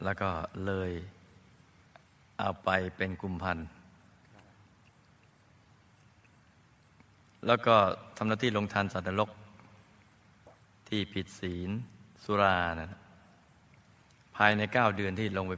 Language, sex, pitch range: Thai, male, 95-110 Hz